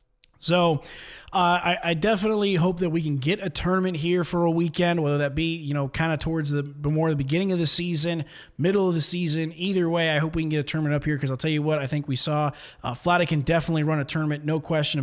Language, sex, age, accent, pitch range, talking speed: English, male, 20-39, American, 145-185 Hz, 255 wpm